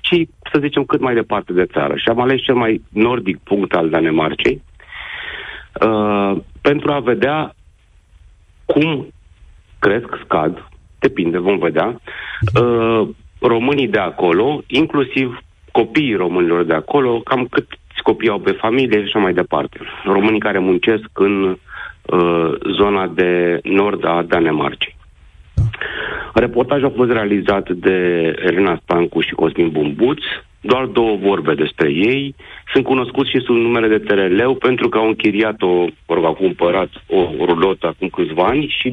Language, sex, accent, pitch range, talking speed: Romanian, male, native, 85-125 Hz, 130 wpm